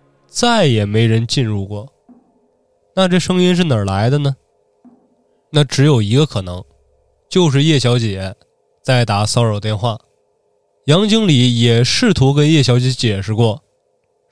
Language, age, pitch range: Chinese, 20-39, 115-160 Hz